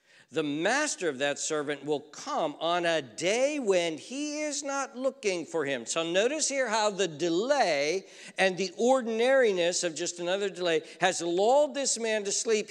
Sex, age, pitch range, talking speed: male, 50-69, 115-190 Hz, 170 wpm